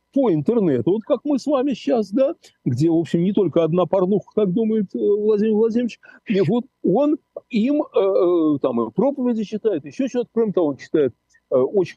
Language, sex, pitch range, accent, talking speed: Russian, male, 150-250 Hz, native, 180 wpm